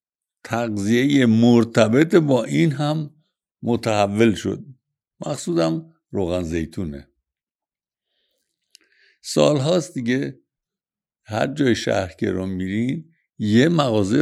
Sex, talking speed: male, 80 wpm